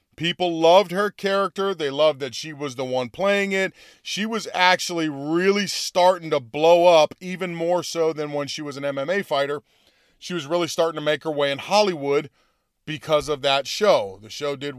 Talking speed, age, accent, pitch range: 195 wpm, 30-49, American, 145-190 Hz